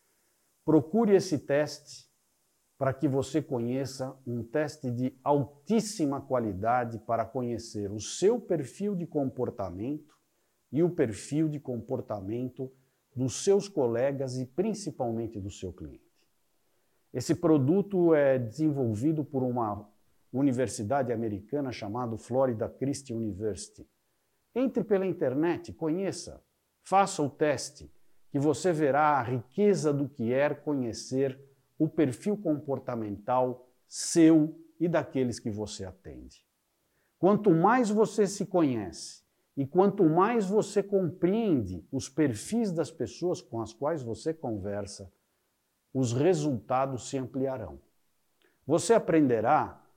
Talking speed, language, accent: 115 wpm, English, Brazilian